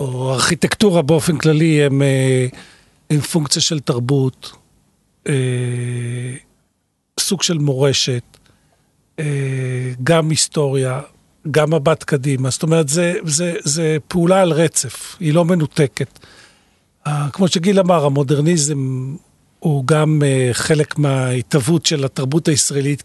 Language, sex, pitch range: Hebrew, male, 135-170 Hz